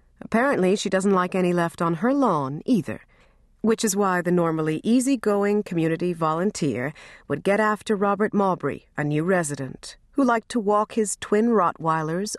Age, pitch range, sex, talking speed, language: 40-59, 155-210 Hz, female, 160 wpm, English